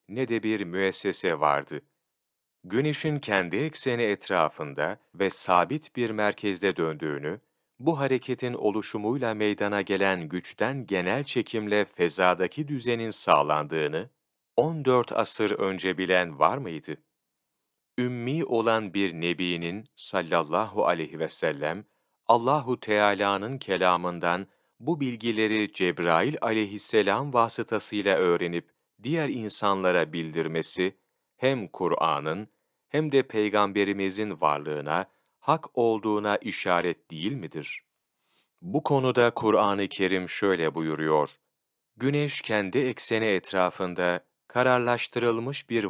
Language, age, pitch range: Turkish, 40-59, 90-120 Hz